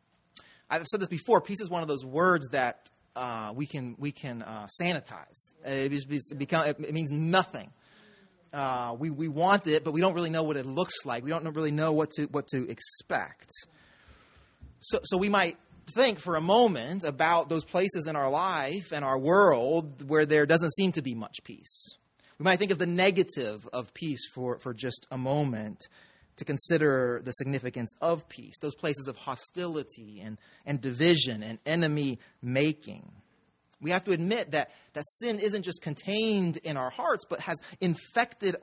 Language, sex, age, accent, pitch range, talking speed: English, male, 30-49, American, 135-180 Hz, 180 wpm